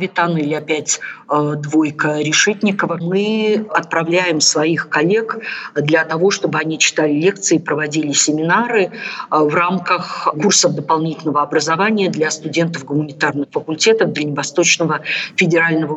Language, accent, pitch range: Russian, native, 155-185 Hz